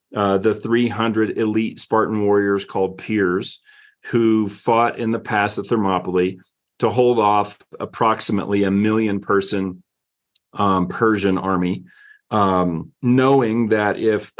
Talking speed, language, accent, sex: 120 wpm, English, American, male